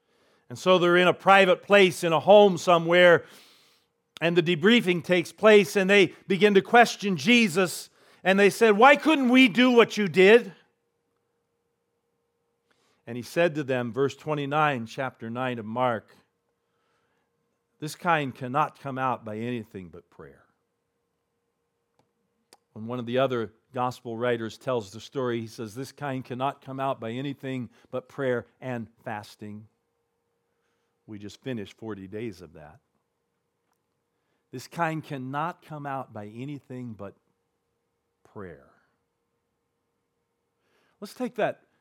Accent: American